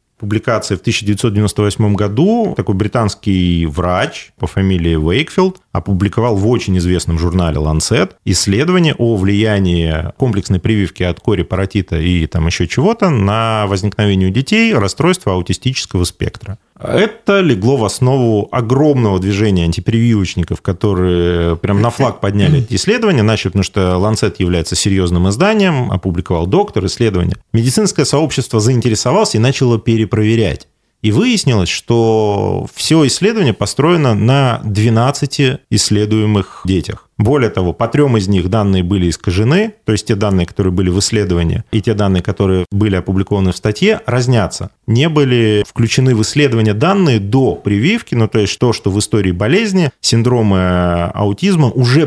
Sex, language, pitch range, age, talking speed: male, Russian, 95-125 Hz, 30-49, 140 wpm